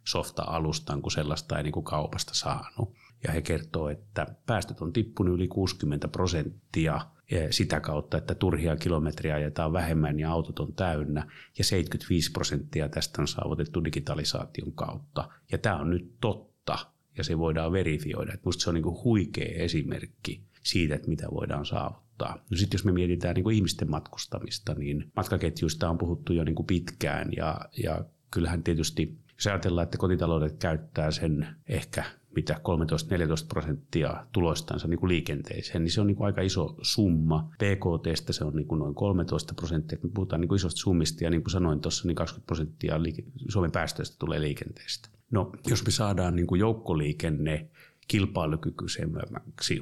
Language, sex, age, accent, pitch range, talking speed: Finnish, male, 30-49, native, 80-100 Hz, 160 wpm